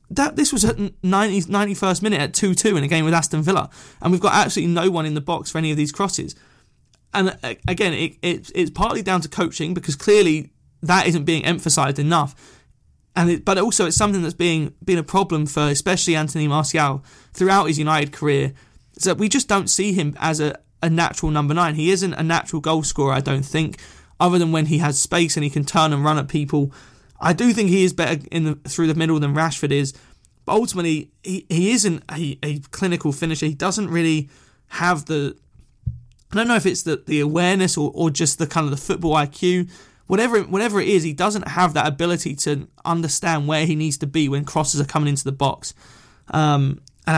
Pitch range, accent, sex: 150-185 Hz, British, male